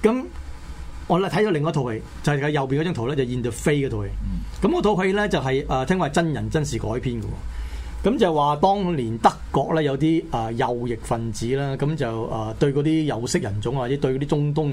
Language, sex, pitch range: Chinese, male, 120-160 Hz